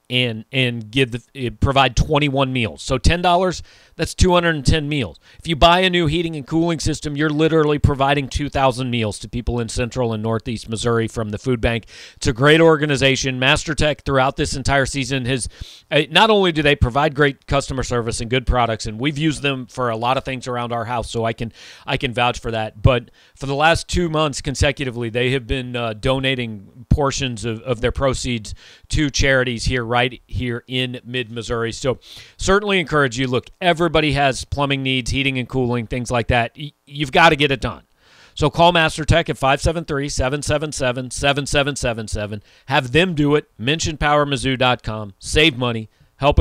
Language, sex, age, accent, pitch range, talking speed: English, male, 40-59, American, 120-145 Hz, 185 wpm